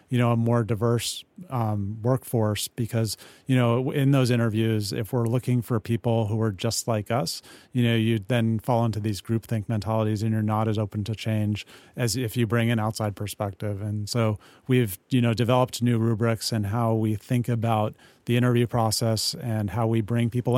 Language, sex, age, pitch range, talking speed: English, male, 30-49, 105-120 Hz, 195 wpm